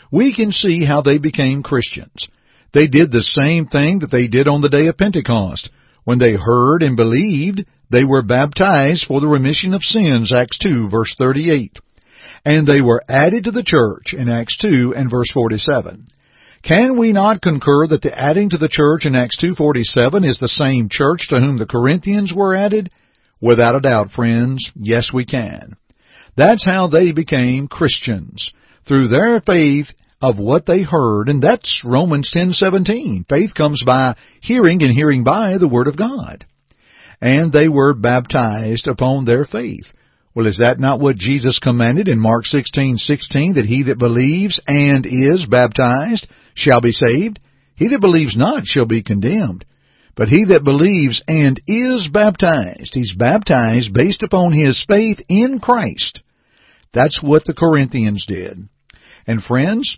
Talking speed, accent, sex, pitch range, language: 170 wpm, American, male, 125-170 Hz, English